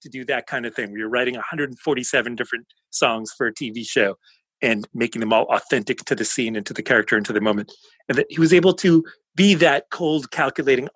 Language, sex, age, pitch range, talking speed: English, male, 30-49, 115-150 Hz, 225 wpm